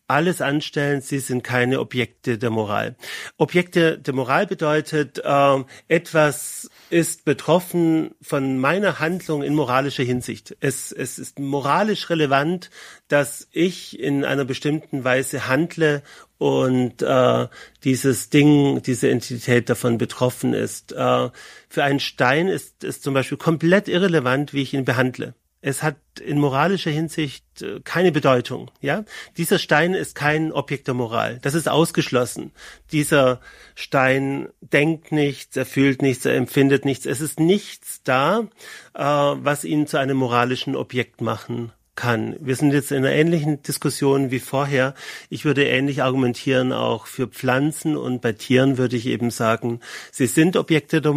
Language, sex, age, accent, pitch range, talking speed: German, male, 40-59, German, 130-155 Hz, 145 wpm